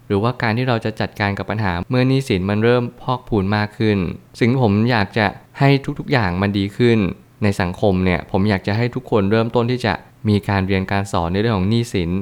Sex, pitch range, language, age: male, 95-120 Hz, Thai, 20-39